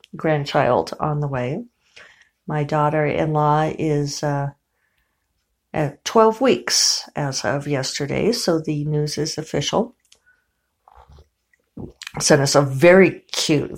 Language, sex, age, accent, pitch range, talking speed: English, female, 50-69, American, 135-160 Hz, 105 wpm